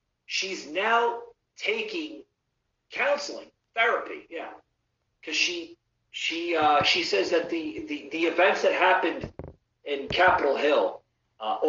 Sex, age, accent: male, 40-59, American